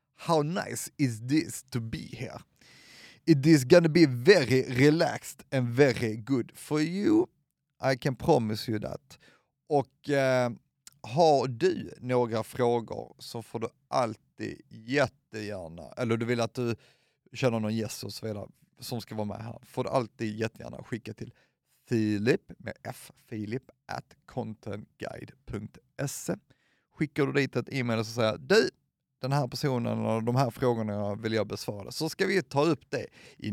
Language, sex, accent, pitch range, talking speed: Swedish, male, native, 110-140 Hz, 160 wpm